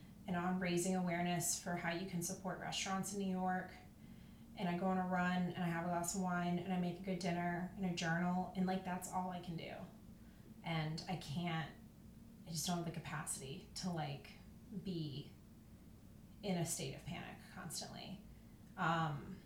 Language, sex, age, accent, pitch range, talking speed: English, female, 20-39, American, 170-190 Hz, 190 wpm